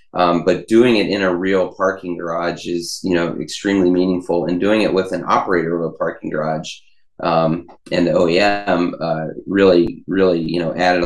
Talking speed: 185 wpm